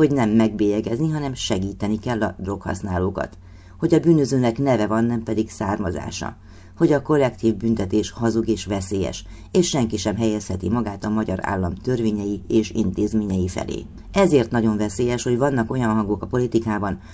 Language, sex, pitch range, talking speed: Hungarian, female, 100-120 Hz, 155 wpm